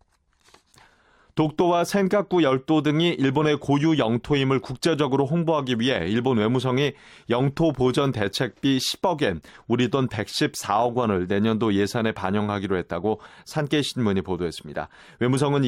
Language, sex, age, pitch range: Korean, male, 30-49, 115-150 Hz